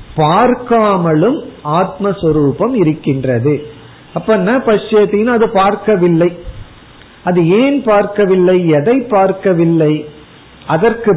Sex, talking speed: male, 75 wpm